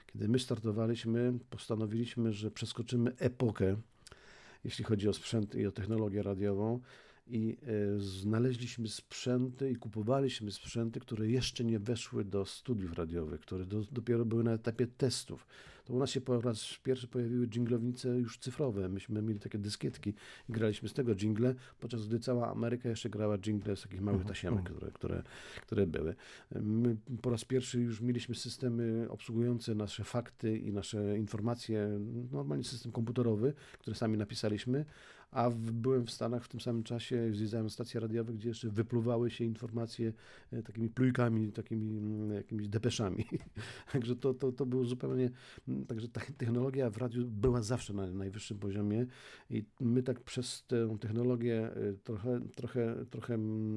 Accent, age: native, 50-69